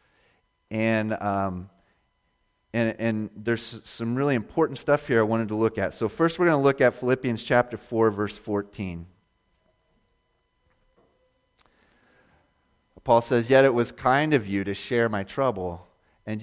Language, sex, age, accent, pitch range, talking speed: English, male, 30-49, American, 100-125 Hz, 145 wpm